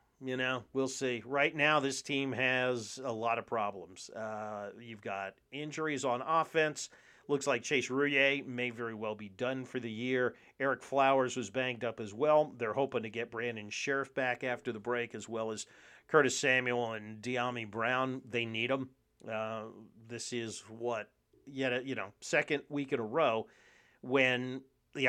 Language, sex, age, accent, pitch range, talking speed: English, male, 40-59, American, 115-135 Hz, 175 wpm